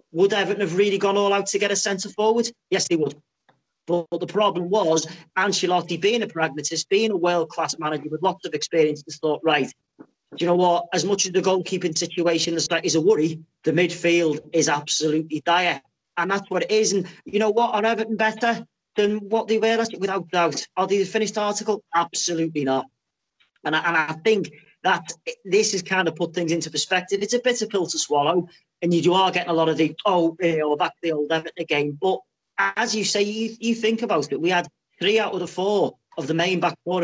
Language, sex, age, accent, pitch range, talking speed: English, male, 30-49, British, 165-205 Hz, 215 wpm